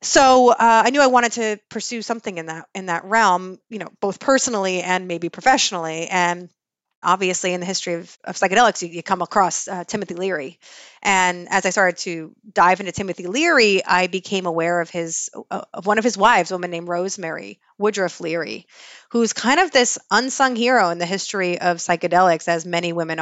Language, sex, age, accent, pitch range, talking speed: English, female, 30-49, American, 175-215 Hz, 195 wpm